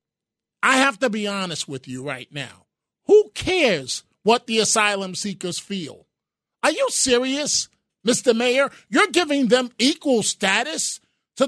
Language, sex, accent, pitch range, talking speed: English, male, American, 165-255 Hz, 140 wpm